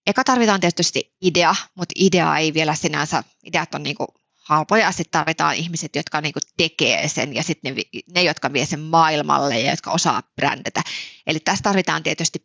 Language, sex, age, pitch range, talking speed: Finnish, female, 20-39, 160-220 Hz, 175 wpm